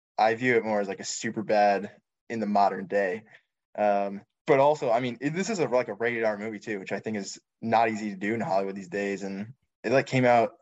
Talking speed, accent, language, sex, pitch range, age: 245 wpm, American, English, male, 100-120 Hz, 10-29